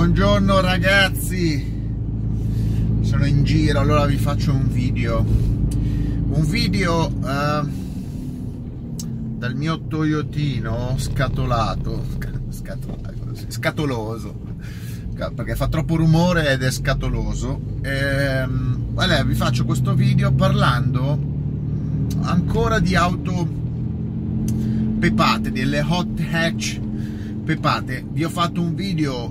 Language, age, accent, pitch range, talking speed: Italian, 30-49, native, 110-140 Hz, 90 wpm